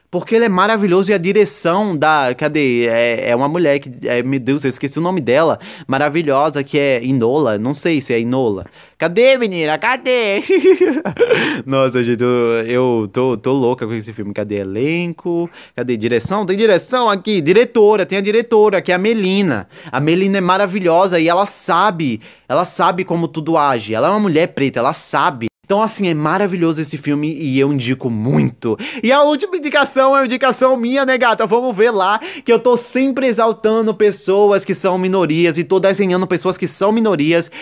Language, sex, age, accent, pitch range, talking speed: Portuguese, male, 20-39, Brazilian, 150-210 Hz, 180 wpm